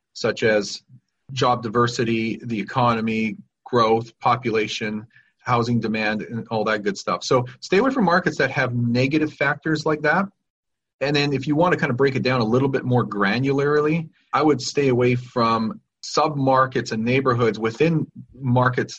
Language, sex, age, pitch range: English, male, 40-59, 115-140 Hz